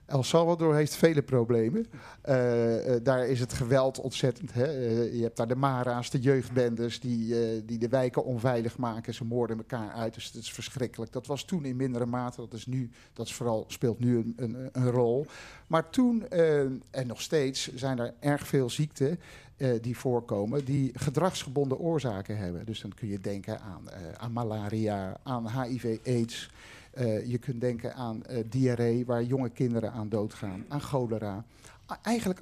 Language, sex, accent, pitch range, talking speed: Dutch, male, Dutch, 115-140 Hz, 185 wpm